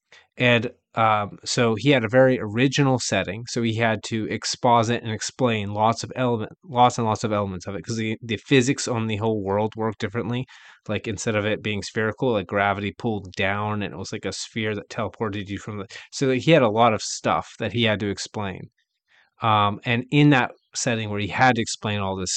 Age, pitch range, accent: 20-39, 105-125 Hz, American